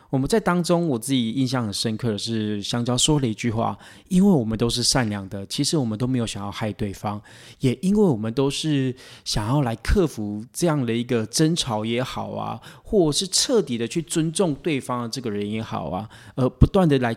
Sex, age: male, 20-39